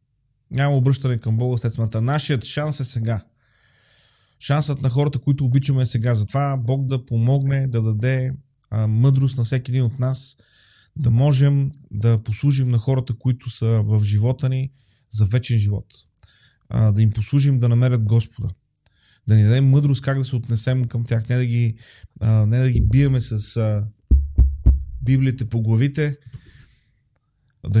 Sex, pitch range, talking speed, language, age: male, 115-135 Hz, 160 wpm, Bulgarian, 30-49